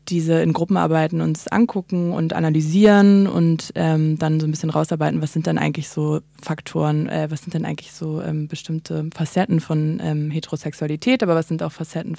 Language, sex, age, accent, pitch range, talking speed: German, female, 20-39, German, 160-175 Hz, 180 wpm